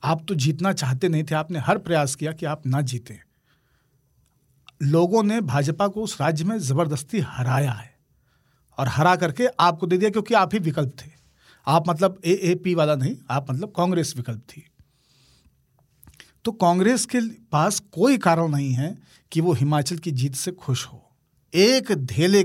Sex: male